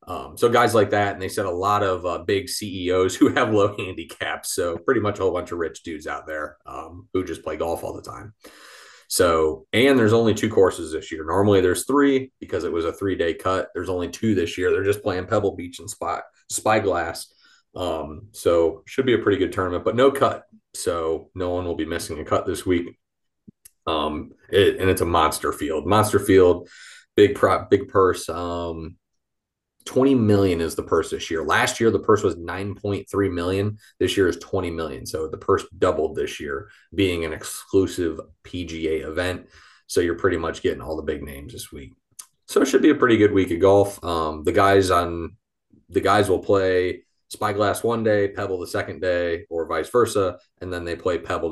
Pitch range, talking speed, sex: 85-140 Hz, 210 wpm, male